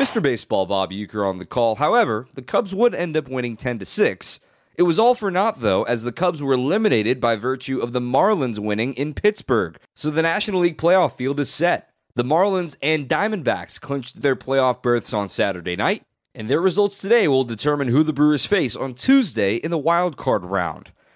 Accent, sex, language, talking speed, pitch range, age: American, male, English, 195 wpm, 115-160 Hz, 30-49